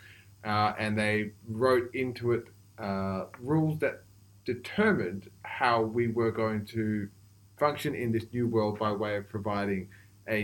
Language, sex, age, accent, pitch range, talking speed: English, male, 20-39, Australian, 100-120 Hz, 145 wpm